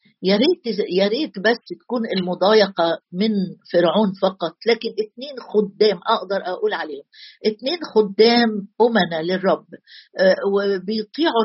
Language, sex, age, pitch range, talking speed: Arabic, female, 50-69, 200-245 Hz, 95 wpm